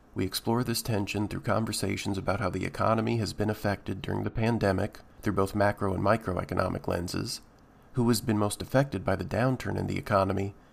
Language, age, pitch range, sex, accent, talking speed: English, 40-59, 100-115 Hz, male, American, 185 wpm